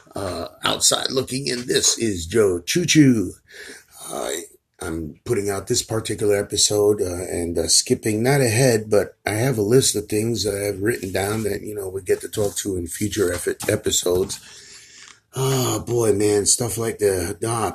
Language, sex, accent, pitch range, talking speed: English, male, American, 95-115 Hz, 180 wpm